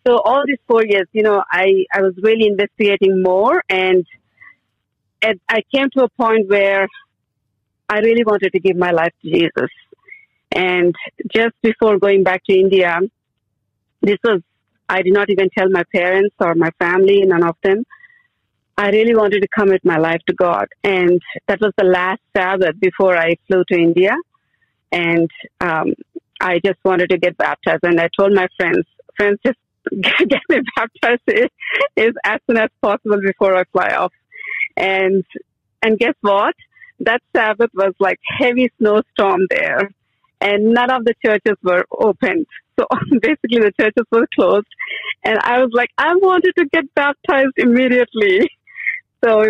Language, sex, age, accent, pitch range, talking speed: English, female, 40-59, Indian, 185-235 Hz, 160 wpm